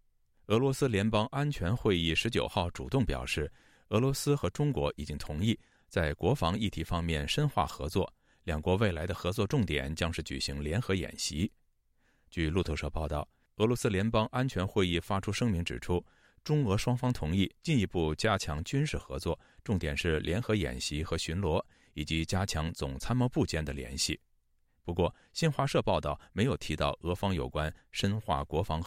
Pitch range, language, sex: 80-110 Hz, Chinese, male